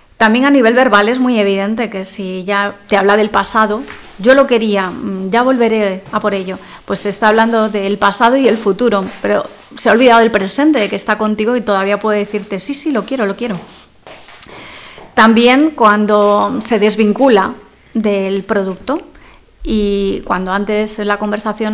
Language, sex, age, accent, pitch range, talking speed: Spanish, female, 30-49, Spanish, 200-225 Hz, 170 wpm